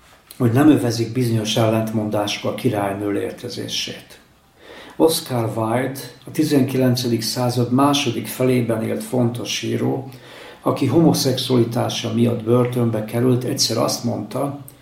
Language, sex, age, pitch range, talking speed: Hungarian, male, 60-79, 115-130 Hz, 105 wpm